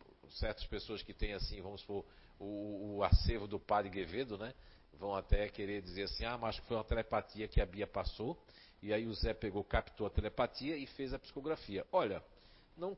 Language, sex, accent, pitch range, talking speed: Portuguese, male, Brazilian, 95-130 Hz, 195 wpm